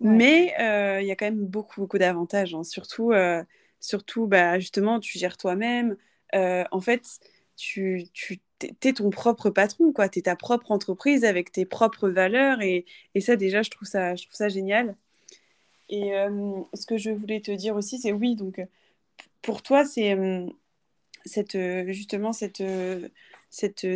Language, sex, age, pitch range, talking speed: French, female, 20-39, 190-230 Hz, 170 wpm